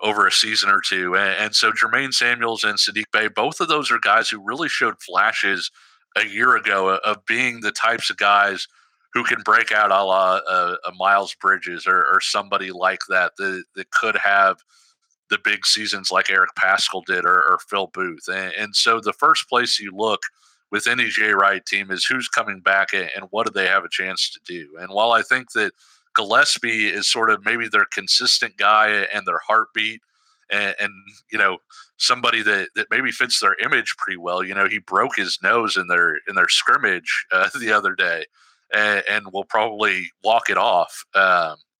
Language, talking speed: English, 200 wpm